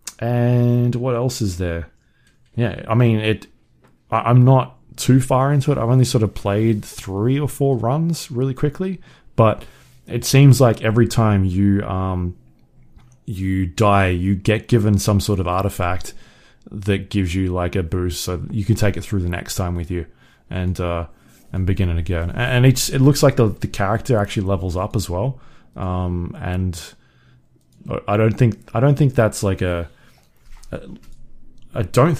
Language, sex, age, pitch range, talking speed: English, male, 20-39, 90-120 Hz, 175 wpm